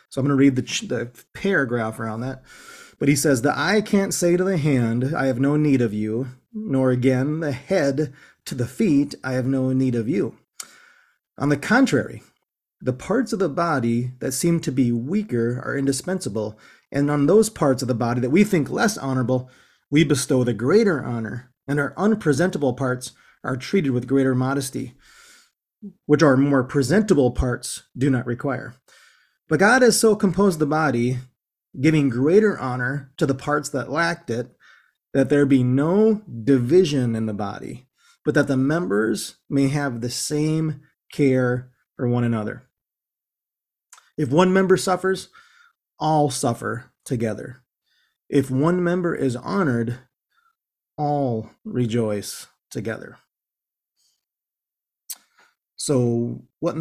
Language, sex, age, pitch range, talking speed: English, male, 30-49, 125-165 Hz, 150 wpm